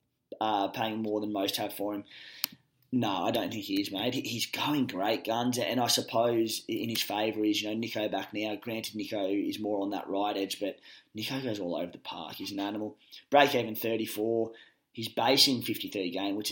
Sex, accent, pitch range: male, Australian, 105-130 Hz